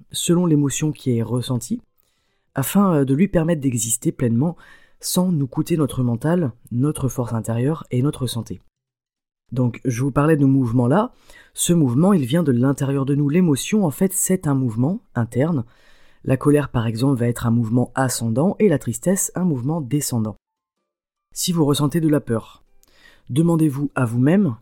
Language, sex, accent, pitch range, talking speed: French, female, French, 120-160 Hz, 170 wpm